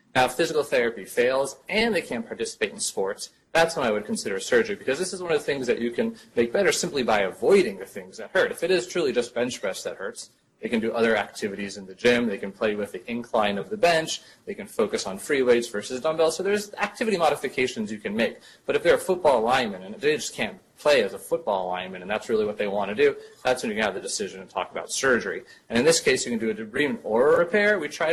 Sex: male